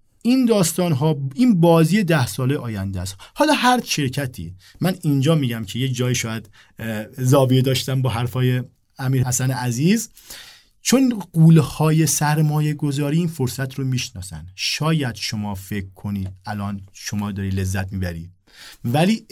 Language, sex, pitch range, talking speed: Persian, male, 115-160 Hz, 135 wpm